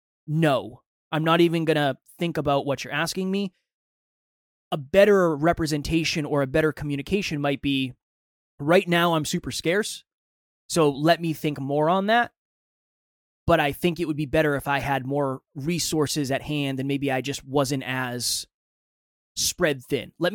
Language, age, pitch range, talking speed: English, 20-39, 135-165 Hz, 165 wpm